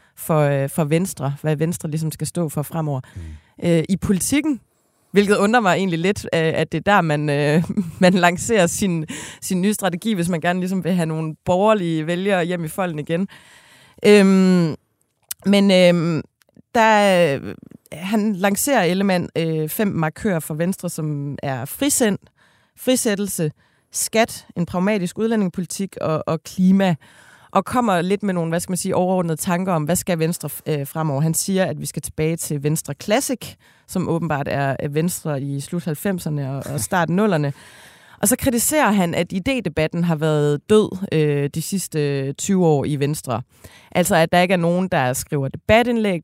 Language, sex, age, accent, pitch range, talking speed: Danish, female, 30-49, native, 150-190 Hz, 165 wpm